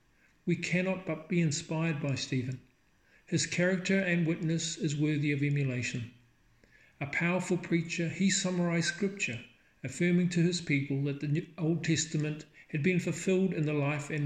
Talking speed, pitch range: 150 wpm, 140-170 Hz